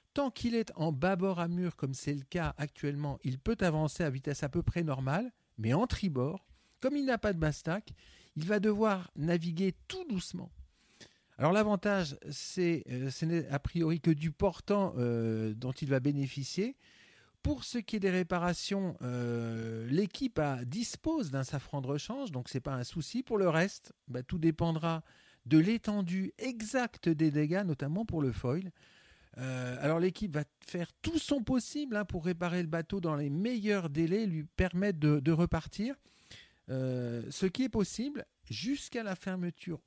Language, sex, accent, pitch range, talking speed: French, male, French, 140-200 Hz, 180 wpm